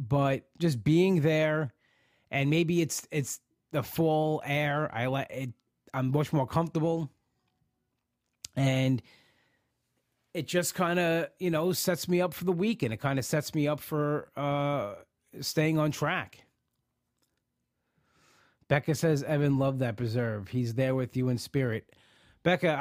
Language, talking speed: English, 145 wpm